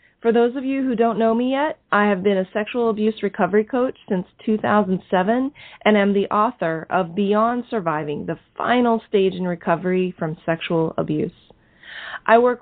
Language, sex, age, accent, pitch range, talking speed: English, female, 30-49, American, 185-235 Hz, 170 wpm